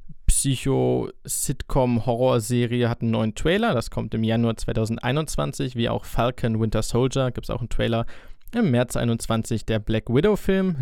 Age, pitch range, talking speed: 20-39, 110-130 Hz, 145 wpm